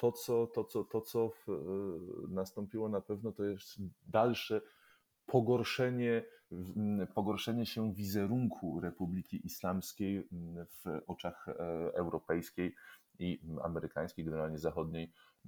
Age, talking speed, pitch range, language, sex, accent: 30-49, 85 wpm, 85-100 Hz, Polish, male, native